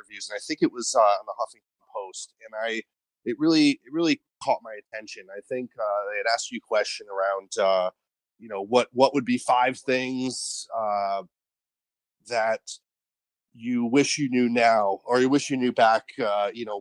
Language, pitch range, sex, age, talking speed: English, 110-150 Hz, male, 30-49, 195 wpm